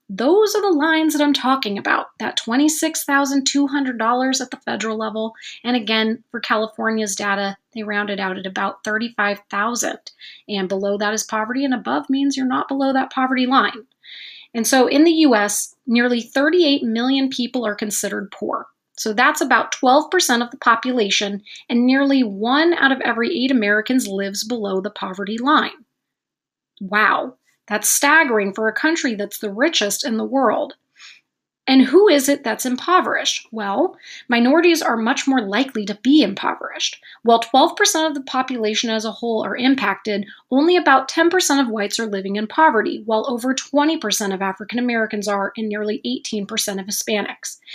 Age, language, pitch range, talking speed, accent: 30-49, English, 210-280 Hz, 160 wpm, American